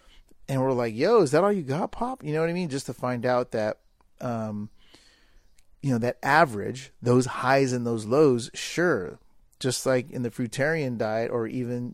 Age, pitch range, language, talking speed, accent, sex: 30-49, 115-135 Hz, English, 195 wpm, American, male